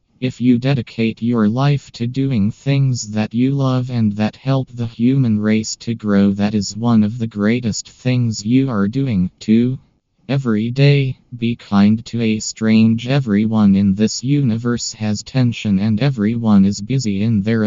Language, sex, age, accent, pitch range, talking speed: Hindi, male, 20-39, American, 105-125 Hz, 165 wpm